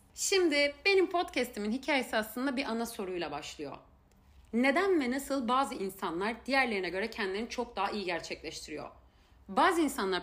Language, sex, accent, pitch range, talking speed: Turkish, female, native, 215-275 Hz, 135 wpm